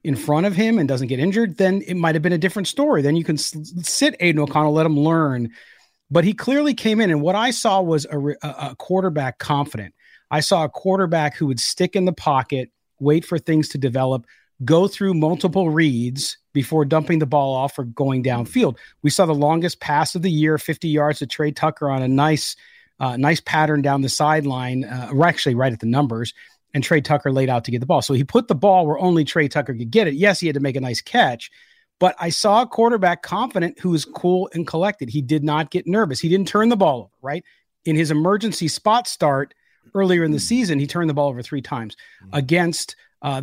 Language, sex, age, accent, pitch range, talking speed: English, male, 40-59, American, 140-180 Hz, 225 wpm